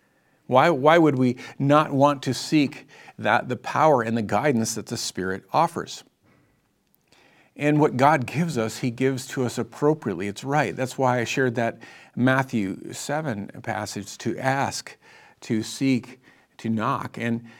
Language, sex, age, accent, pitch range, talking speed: English, male, 50-69, American, 115-145 Hz, 155 wpm